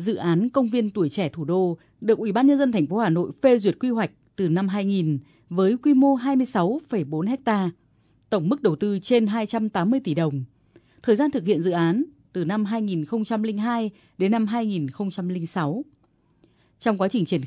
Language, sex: Vietnamese, female